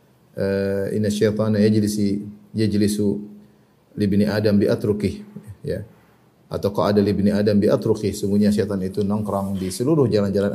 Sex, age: male, 30-49